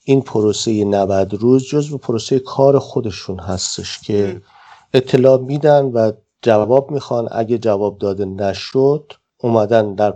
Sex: male